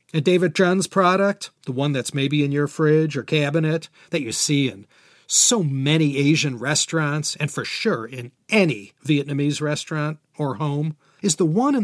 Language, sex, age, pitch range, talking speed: English, male, 40-59, 135-165 Hz, 170 wpm